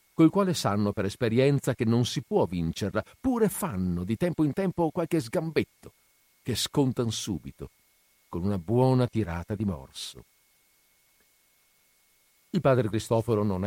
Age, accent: 50-69, native